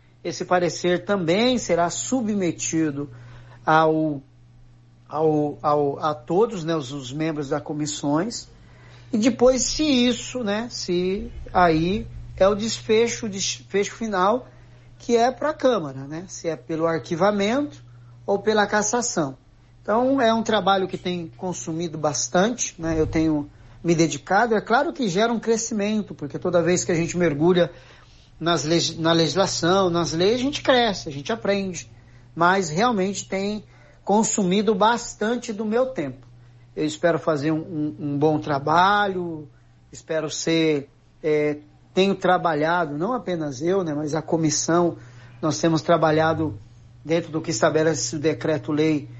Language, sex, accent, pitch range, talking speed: Portuguese, male, Brazilian, 150-195 Hz, 135 wpm